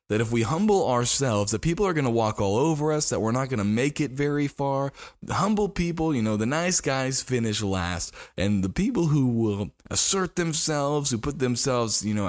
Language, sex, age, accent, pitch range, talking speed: English, male, 20-39, American, 100-135 Hz, 215 wpm